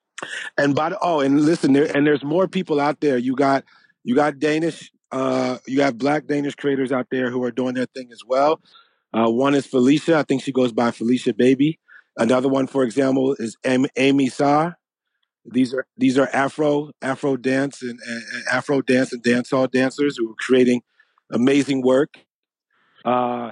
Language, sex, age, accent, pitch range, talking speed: Danish, male, 40-59, American, 125-140 Hz, 185 wpm